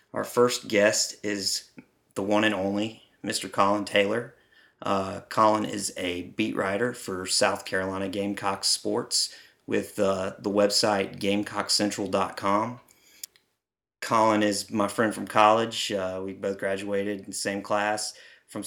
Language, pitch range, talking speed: English, 100-110 Hz, 135 wpm